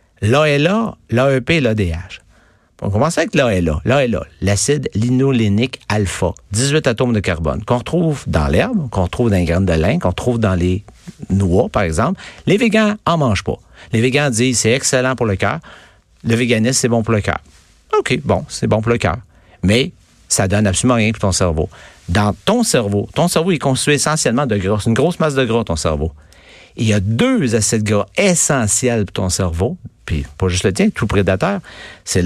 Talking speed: 195 wpm